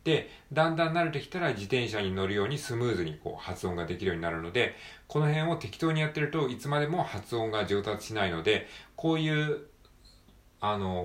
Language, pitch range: Japanese, 95-135 Hz